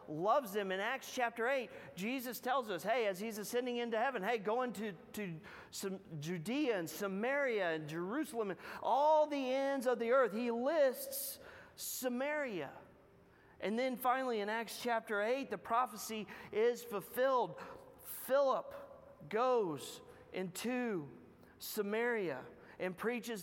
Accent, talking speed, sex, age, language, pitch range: American, 130 wpm, male, 40-59, English, 185-250 Hz